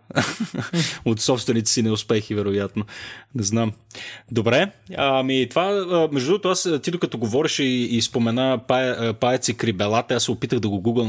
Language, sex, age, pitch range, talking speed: Bulgarian, male, 30-49, 110-130 Hz, 150 wpm